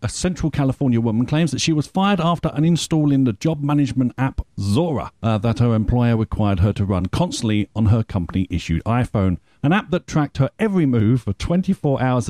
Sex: male